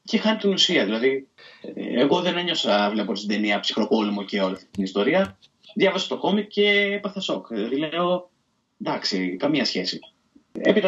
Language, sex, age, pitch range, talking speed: Greek, male, 30-49, 105-155 Hz, 155 wpm